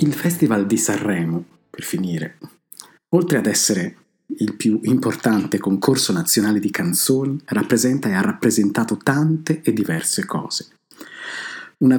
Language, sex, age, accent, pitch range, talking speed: Italian, male, 50-69, native, 105-155 Hz, 125 wpm